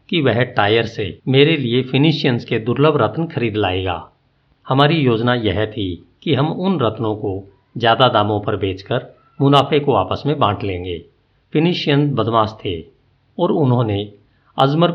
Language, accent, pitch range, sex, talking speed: Hindi, native, 100-140 Hz, male, 150 wpm